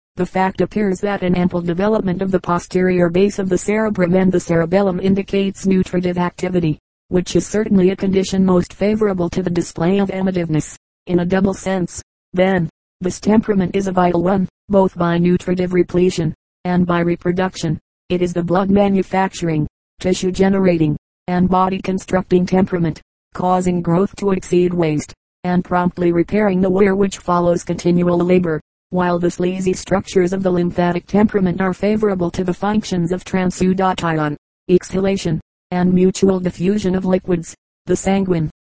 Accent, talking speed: American, 150 wpm